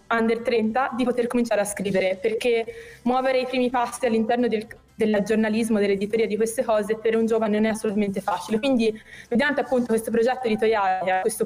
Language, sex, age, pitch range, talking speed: Italian, female, 20-39, 205-240 Hz, 185 wpm